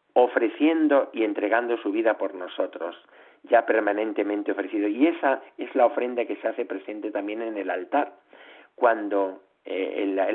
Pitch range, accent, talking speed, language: 110-150 Hz, Spanish, 160 wpm, Spanish